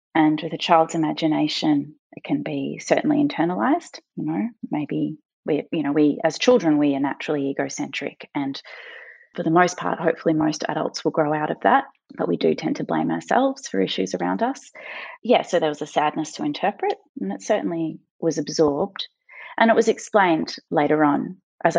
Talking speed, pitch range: 185 wpm, 155-235 Hz